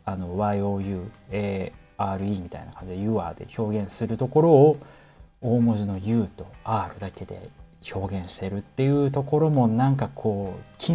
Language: Japanese